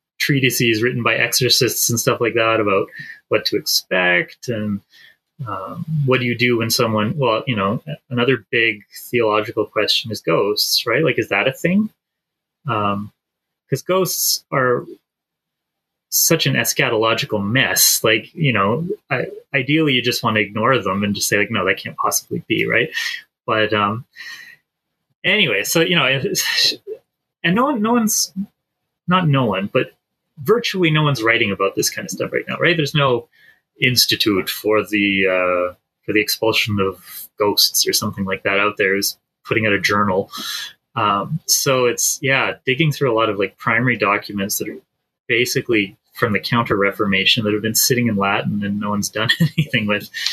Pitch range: 105-155 Hz